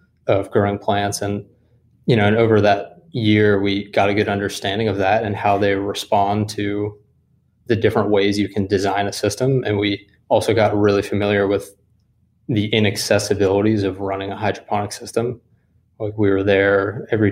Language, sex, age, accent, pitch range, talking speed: English, male, 20-39, American, 100-110 Hz, 170 wpm